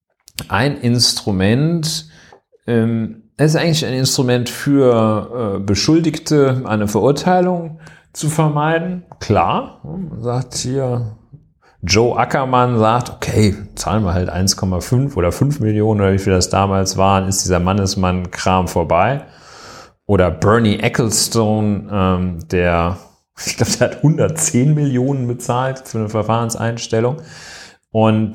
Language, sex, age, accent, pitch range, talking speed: German, male, 40-59, German, 95-130 Hz, 115 wpm